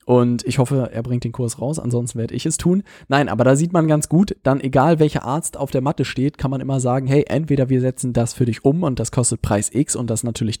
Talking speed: 275 wpm